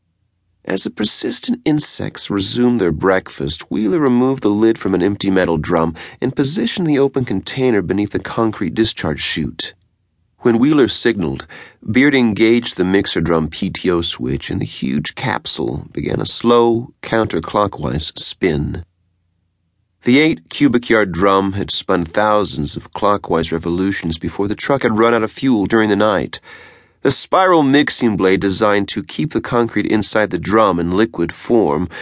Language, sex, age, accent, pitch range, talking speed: English, male, 40-59, American, 85-115 Hz, 155 wpm